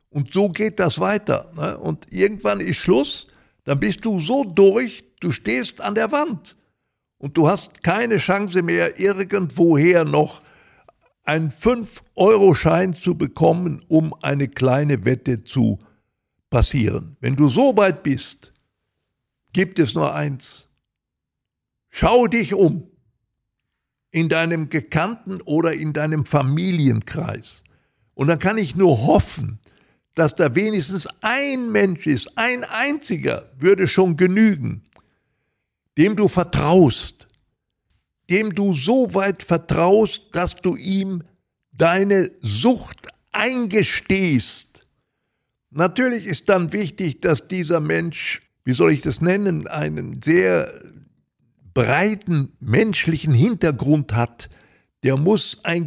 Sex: male